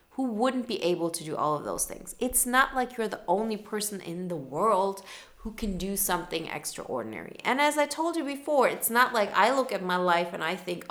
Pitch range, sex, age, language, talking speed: 180-235 Hz, female, 30-49, English, 230 wpm